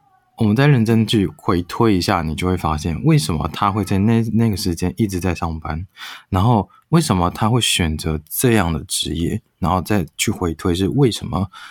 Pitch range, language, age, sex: 85-105 Hz, Chinese, 20-39, male